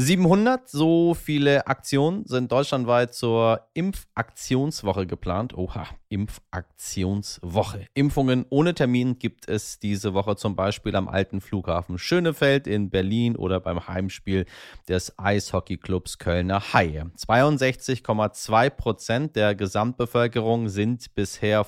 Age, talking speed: 30-49, 110 wpm